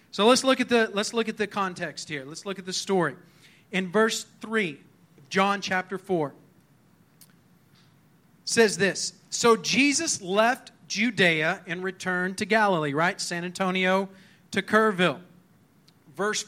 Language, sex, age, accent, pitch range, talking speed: English, male, 40-59, American, 165-205 Hz, 125 wpm